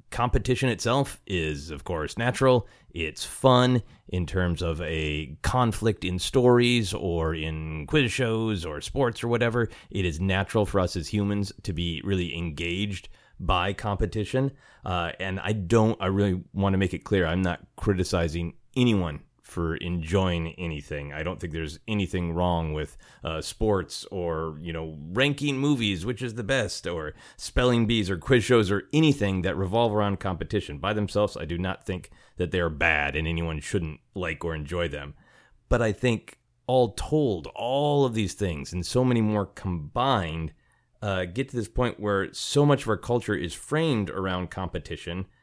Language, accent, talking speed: English, American, 170 wpm